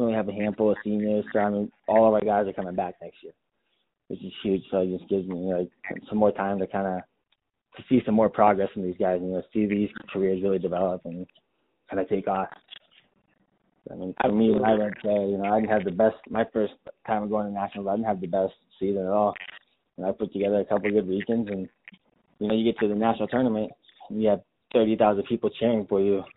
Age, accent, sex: 20-39, American, male